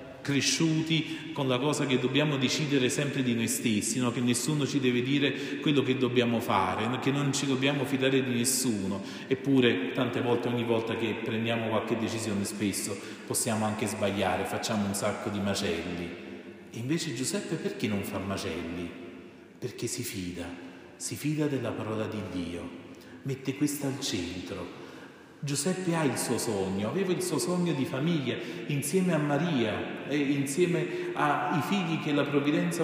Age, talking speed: 40-59, 155 wpm